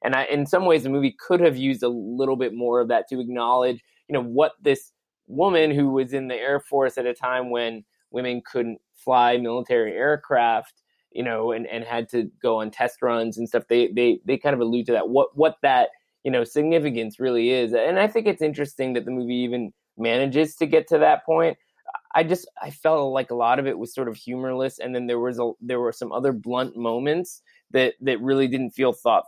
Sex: male